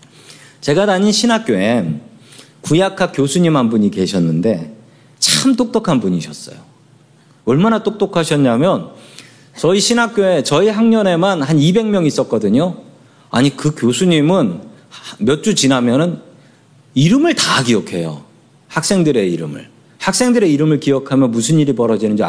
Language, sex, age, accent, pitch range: Korean, male, 40-59, native, 135-200 Hz